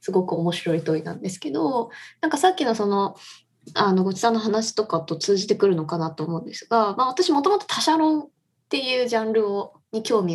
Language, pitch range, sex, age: Japanese, 170-245 Hz, female, 20-39